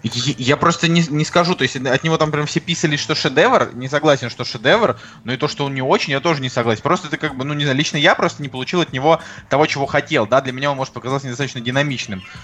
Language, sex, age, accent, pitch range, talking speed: Russian, male, 20-39, native, 130-160 Hz, 265 wpm